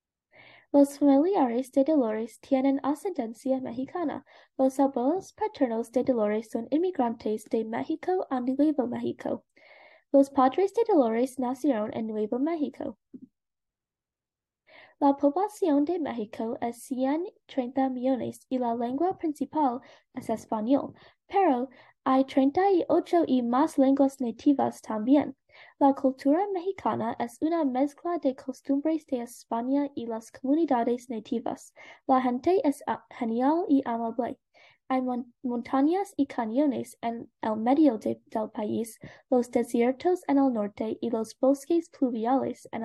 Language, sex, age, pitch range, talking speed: English, female, 10-29, 240-295 Hz, 120 wpm